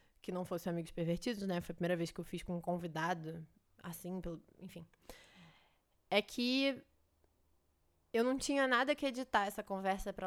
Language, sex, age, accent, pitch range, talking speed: Portuguese, female, 20-39, Brazilian, 180-225 Hz, 175 wpm